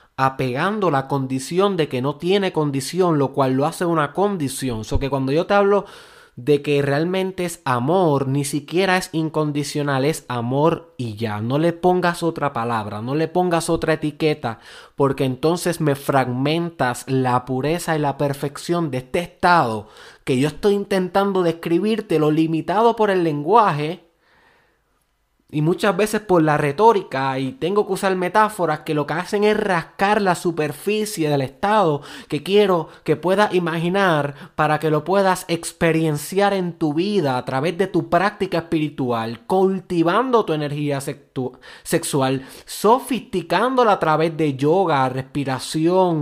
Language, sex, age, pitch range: Spanish, male, 20-39, 135-185 Hz